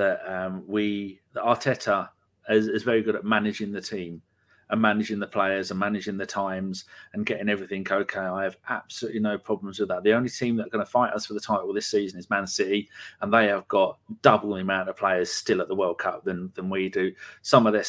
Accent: British